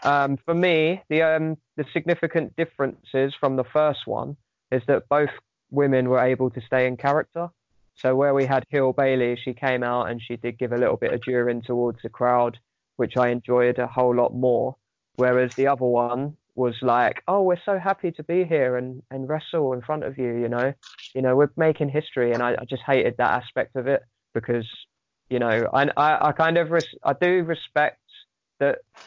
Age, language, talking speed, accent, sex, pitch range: 20-39, English, 200 wpm, British, male, 125-145 Hz